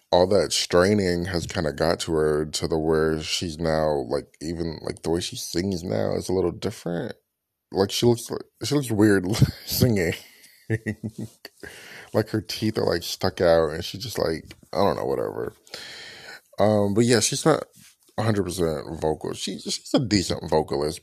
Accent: American